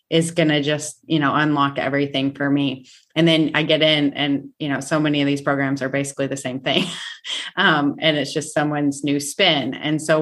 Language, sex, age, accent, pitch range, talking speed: English, female, 30-49, American, 145-175 Hz, 215 wpm